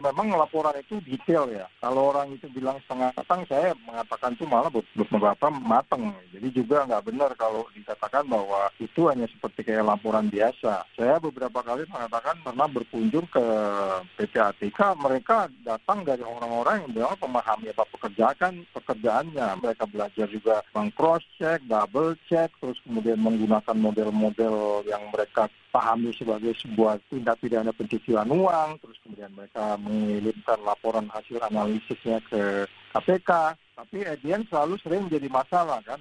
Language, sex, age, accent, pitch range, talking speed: Indonesian, male, 40-59, native, 110-160 Hz, 140 wpm